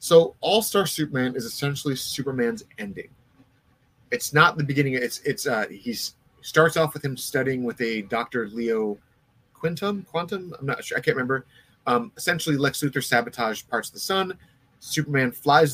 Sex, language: male, English